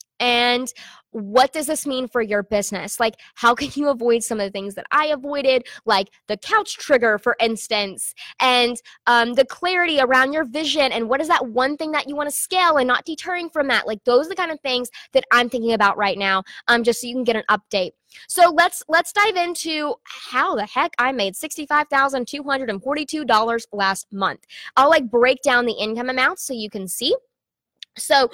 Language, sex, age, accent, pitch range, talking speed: English, female, 20-39, American, 240-320 Hz, 200 wpm